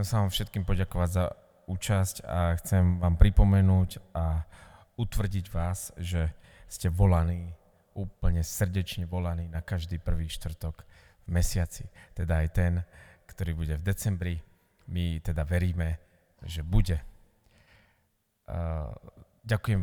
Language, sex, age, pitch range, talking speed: Slovak, male, 30-49, 85-95 Hz, 110 wpm